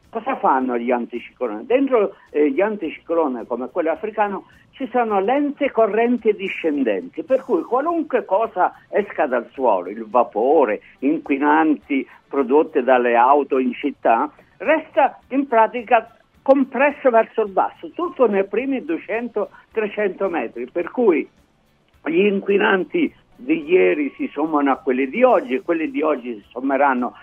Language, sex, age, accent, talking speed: Italian, male, 60-79, native, 135 wpm